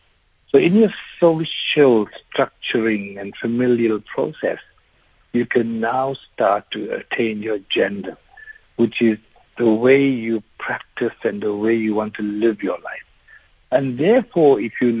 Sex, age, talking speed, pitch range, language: male, 60-79, 140 wpm, 100-130 Hz, English